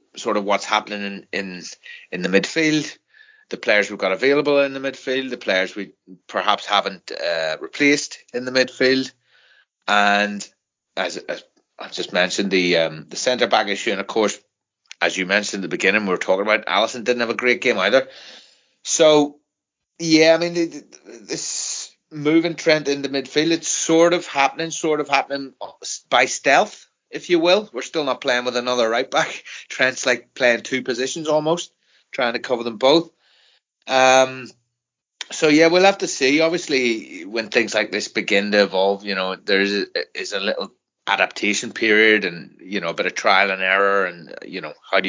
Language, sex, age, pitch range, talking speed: English, male, 30-49, 100-155 Hz, 185 wpm